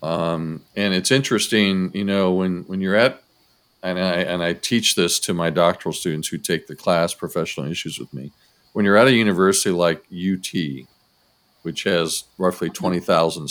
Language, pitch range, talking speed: English, 85-105 Hz, 175 wpm